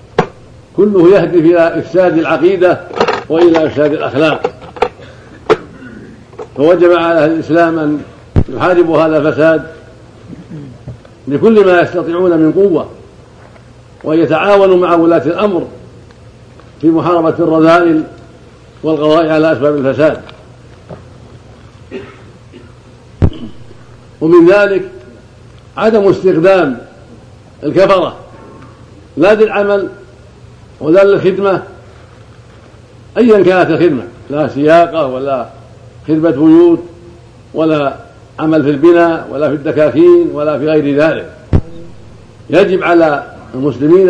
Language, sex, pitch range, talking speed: Arabic, male, 120-170 Hz, 85 wpm